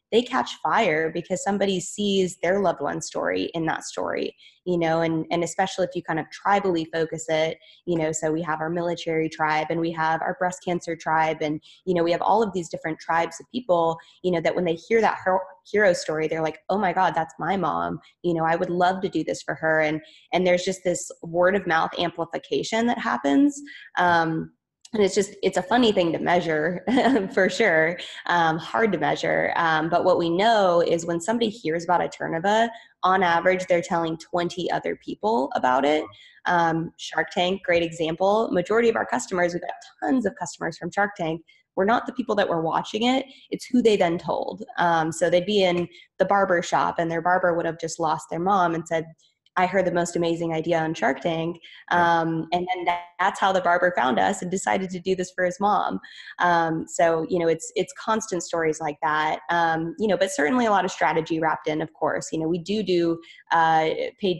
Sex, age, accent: female, 20-39, American